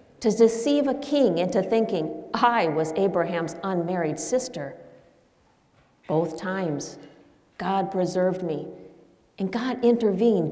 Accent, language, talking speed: American, English, 110 wpm